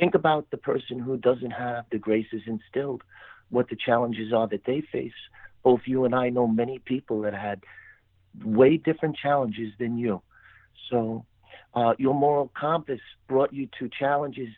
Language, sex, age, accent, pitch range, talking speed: English, male, 50-69, American, 105-125 Hz, 165 wpm